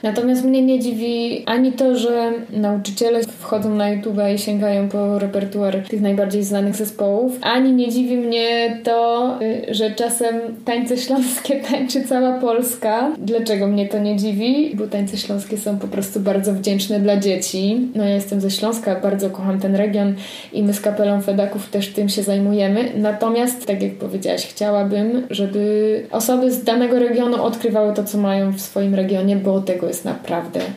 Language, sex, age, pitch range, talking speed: Polish, female, 20-39, 200-235 Hz, 165 wpm